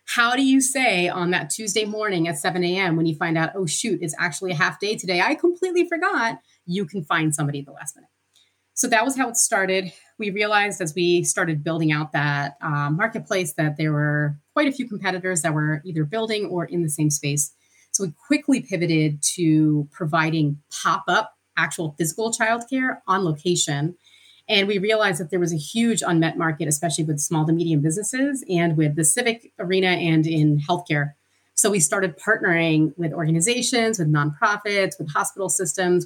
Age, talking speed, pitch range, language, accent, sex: 30-49, 190 wpm, 155-200 Hz, English, American, female